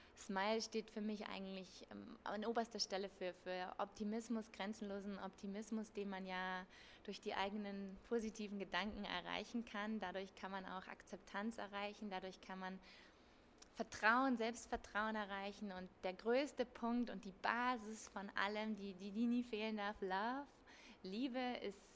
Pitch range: 190-220 Hz